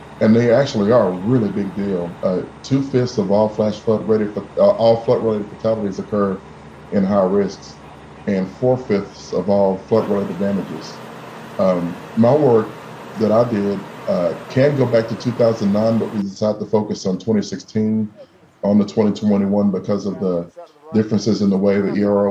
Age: 30-49